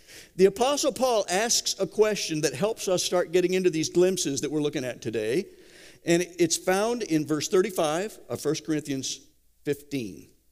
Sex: male